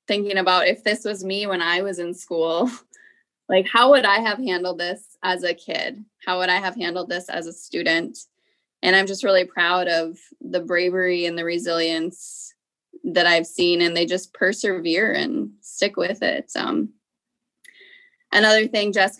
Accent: American